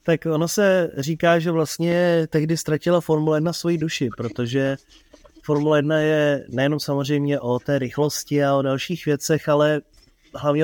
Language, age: Czech, 20-39